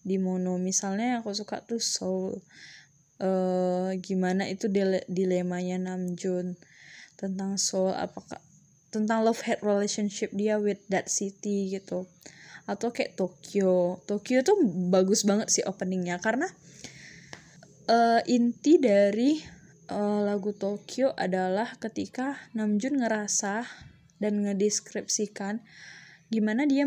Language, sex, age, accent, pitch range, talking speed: Indonesian, female, 10-29, native, 190-235 Hz, 110 wpm